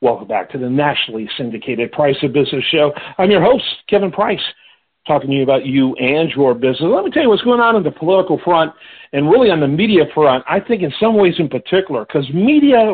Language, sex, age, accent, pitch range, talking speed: English, male, 50-69, American, 145-190 Hz, 225 wpm